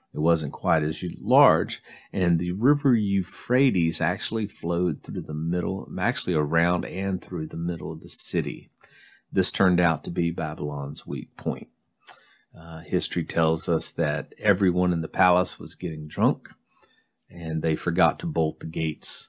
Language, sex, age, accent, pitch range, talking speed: English, male, 40-59, American, 80-90 Hz, 155 wpm